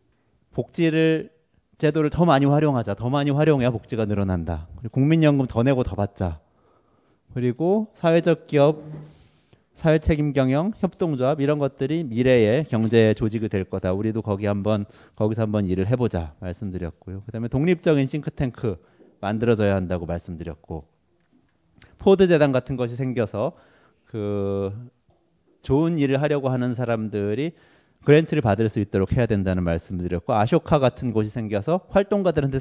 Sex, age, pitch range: male, 30-49, 105-150 Hz